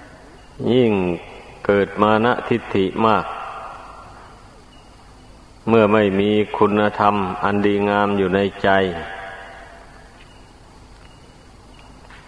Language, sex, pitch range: Thai, male, 100-110 Hz